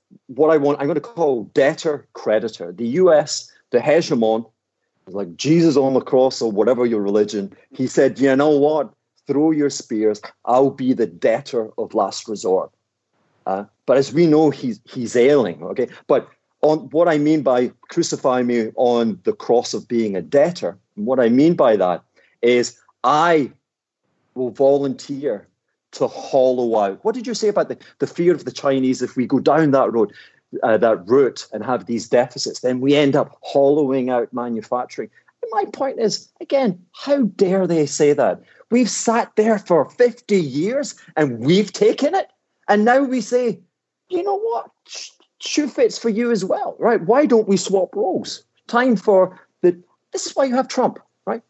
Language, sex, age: English, male, 40-59